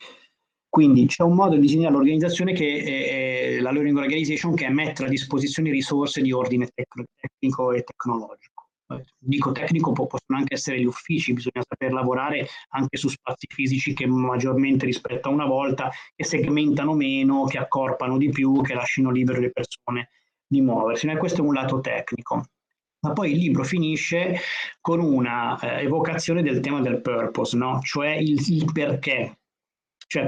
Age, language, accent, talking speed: 30-49, Italian, native, 155 wpm